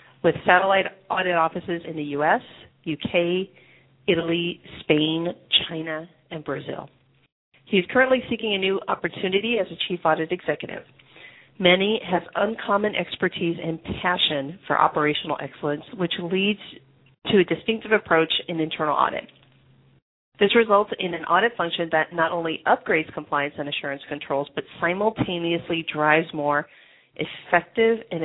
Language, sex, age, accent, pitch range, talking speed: English, female, 40-59, American, 155-190 Hz, 135 wpm